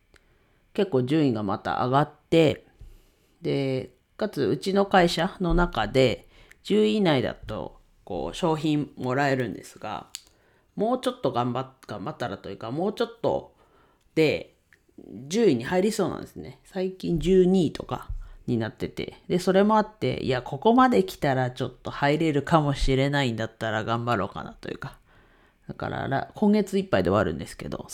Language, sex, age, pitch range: Japanese, female, 40-59, 125-185 Hz